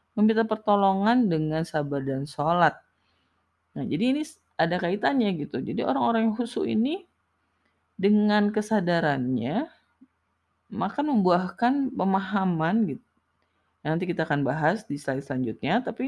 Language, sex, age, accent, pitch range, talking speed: Indonesian, female, 20-39, native, 145-215 Hz, 120 wpm